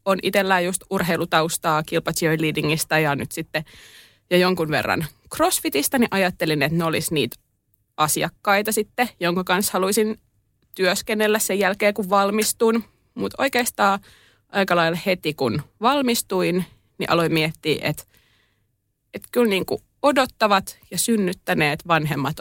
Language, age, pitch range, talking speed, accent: Finnish, 20-39, 155-200 Hz, 130 wpm, native